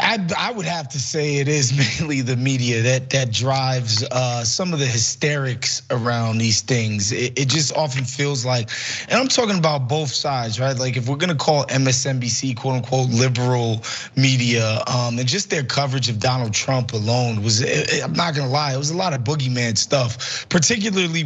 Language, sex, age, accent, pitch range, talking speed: English, male, 20-39, American, 125-145 Hz, 175 wpm